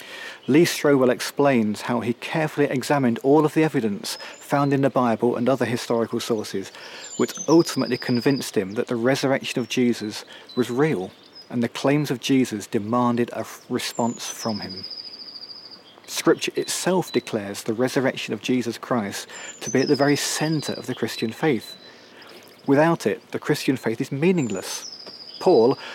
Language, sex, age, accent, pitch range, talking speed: English, male, 40-59, British, 115-145 Hz, 155 wpm